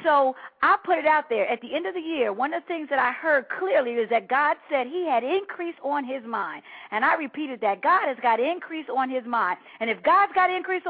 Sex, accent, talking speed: female, American, 255 wpm